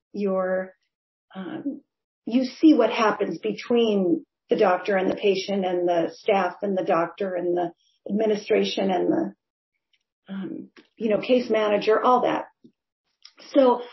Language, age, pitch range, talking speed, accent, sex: English, 40-59, 195-240 Hz, 135 wpm, American, female